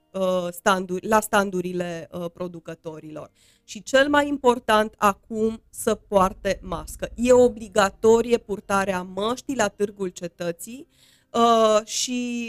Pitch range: 195-235 Hz